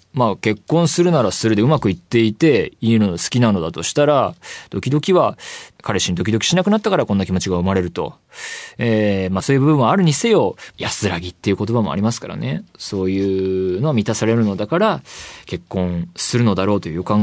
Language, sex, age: Japanese, male, 20-39